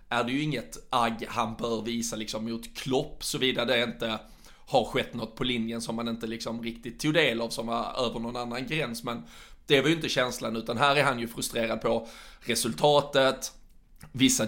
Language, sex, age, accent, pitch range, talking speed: Swedish, male, 20-39, native, 115-130 Hz, 205 wpm